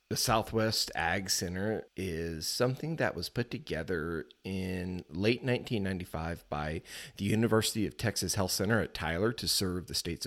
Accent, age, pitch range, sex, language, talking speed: American, 30-49, 90-110 Hz, male, English, 150 wpm